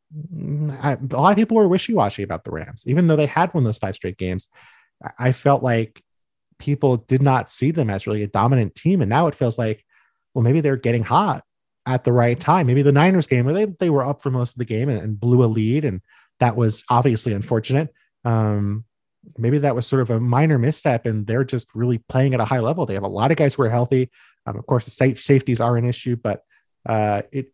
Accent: American